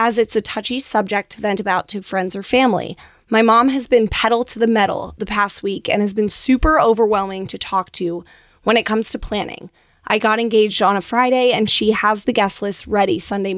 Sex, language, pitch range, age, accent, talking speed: female, English, 200-245 Hz, 10-29, American, 220 wpm